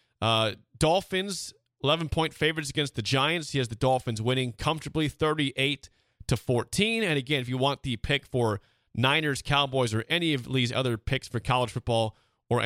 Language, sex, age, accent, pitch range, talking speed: English, male, 30-49, American, 110-140 Hz, 170 wpm